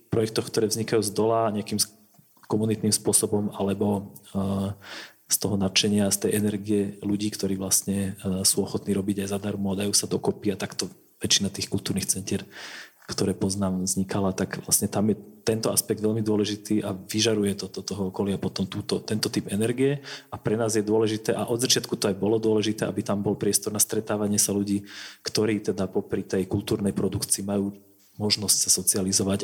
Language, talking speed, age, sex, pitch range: Slovak, 175 wpm, 30-49, male, 100-110 Hz